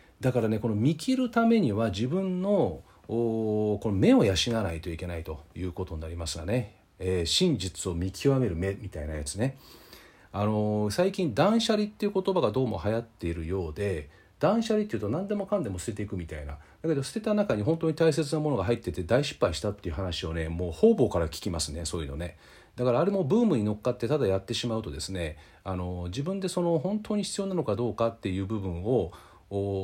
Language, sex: Japanese, male